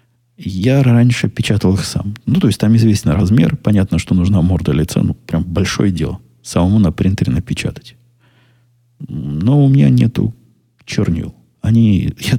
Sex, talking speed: male, 145 wpm